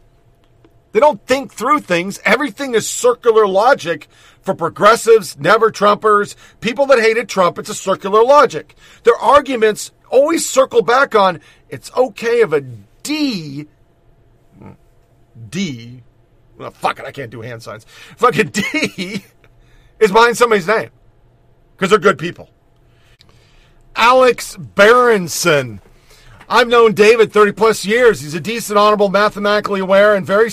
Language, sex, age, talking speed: English, male, 40-59, 130 wpm